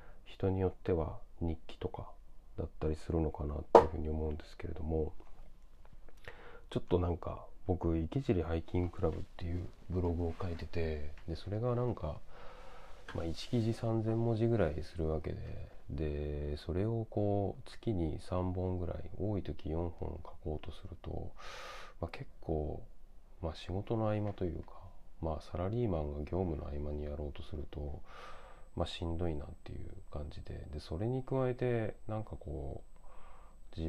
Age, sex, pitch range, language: 40-59, male, 75-100 Hz, Japanese